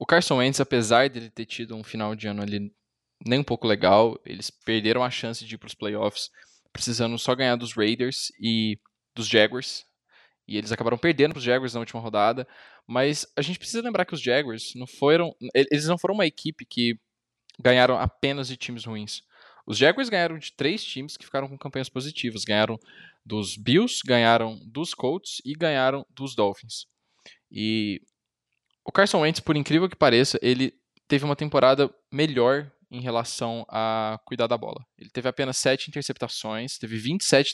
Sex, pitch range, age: male, 110-140 Hz, 10-29